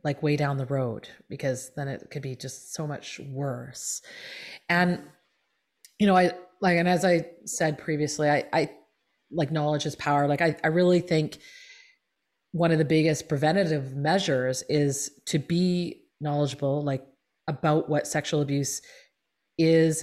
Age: 30-49